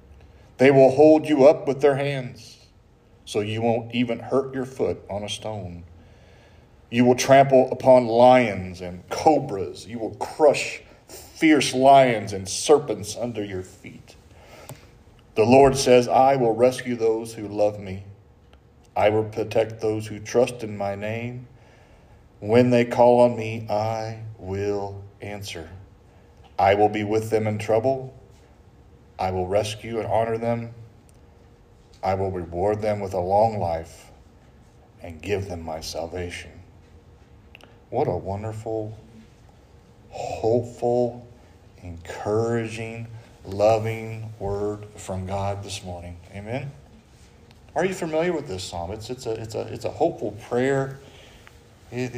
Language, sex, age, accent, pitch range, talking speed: English, male, 40-59, American, 100-125 Hz, 135 wpm